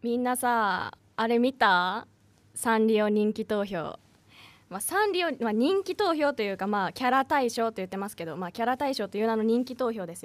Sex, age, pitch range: female, 20-39, 200-265 Hz